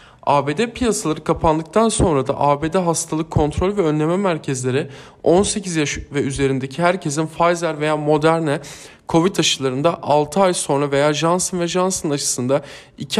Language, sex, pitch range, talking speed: Turkish, male, 145-185 Hz, 135 wpm